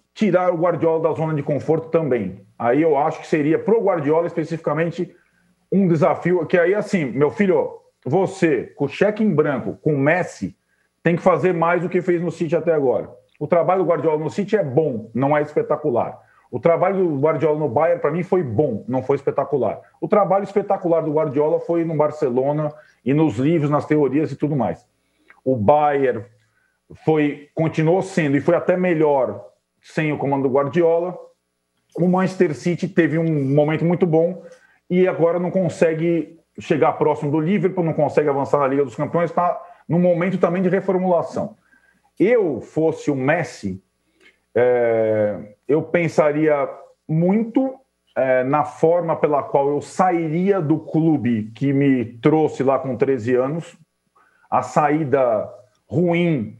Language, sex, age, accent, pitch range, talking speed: Portuguese, male, 40-59, Brazilian, 145-180 Hz, 160 wpm